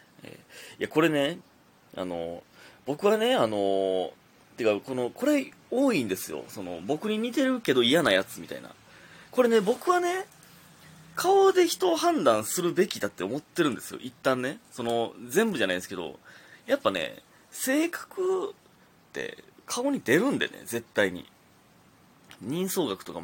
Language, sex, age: Japanese, male, 20-39